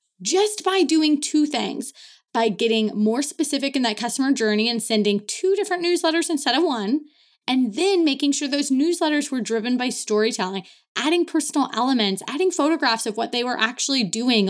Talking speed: 175 wpm